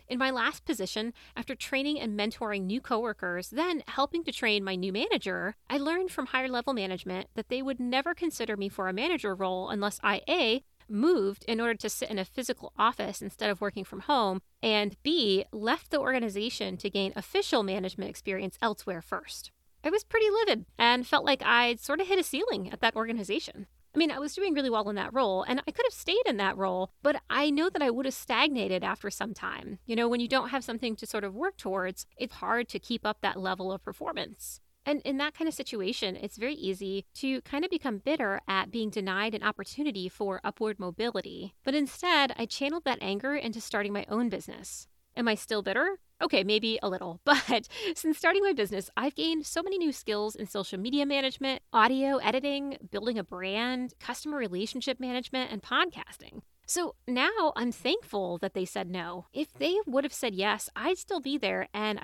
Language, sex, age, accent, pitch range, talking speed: English, female, 30-49, American, 200-280 Hz, 205 wpm